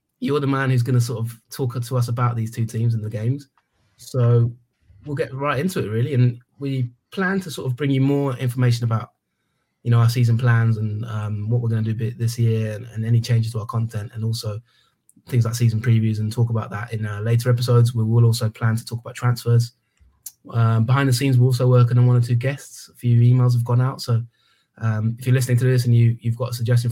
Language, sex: English, male